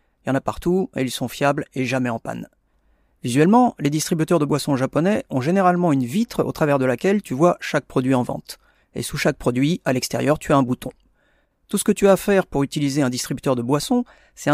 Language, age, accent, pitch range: Japanese, 30-49, French, 130-175 Hz